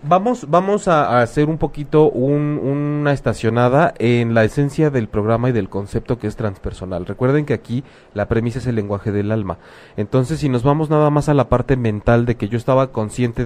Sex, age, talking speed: male, 30-49, 200 wpm